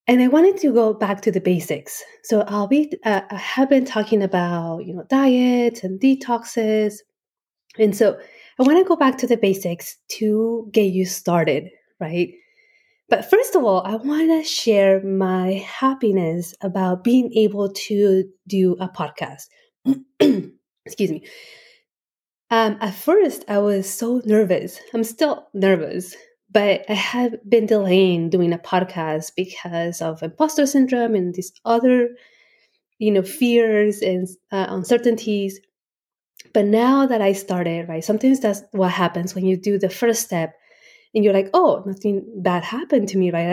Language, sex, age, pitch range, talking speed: English, female, 20-39, 185-245 Hz, 155 wpm